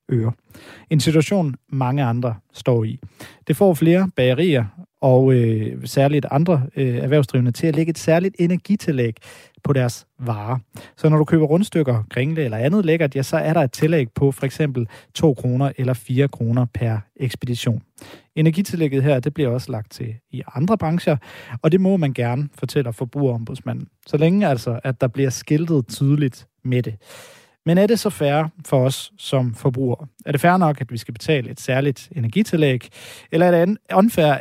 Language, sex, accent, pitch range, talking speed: Danish, male, native, 120-155 Hz, 165 wpm